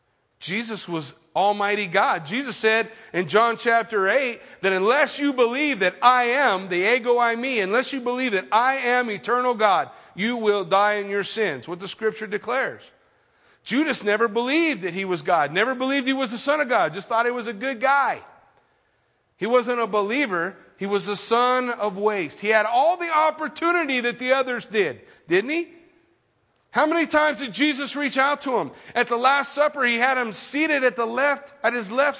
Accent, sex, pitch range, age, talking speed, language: American, male, 190-270 Hz, 40-59, 195 wpm, English